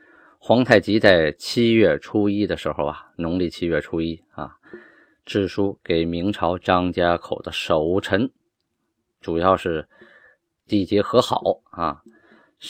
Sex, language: male, Chinese